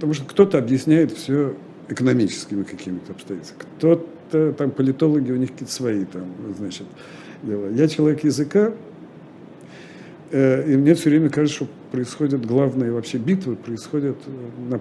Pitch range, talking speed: 125-150 Hz, 135 wpm